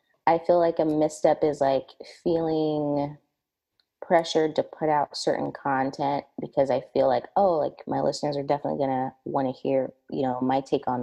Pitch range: 135-160 Hz